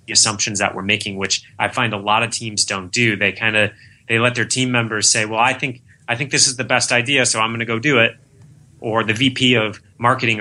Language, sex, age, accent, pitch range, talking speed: English, male, 30-49, American, 95-115 Hz, 255 wpm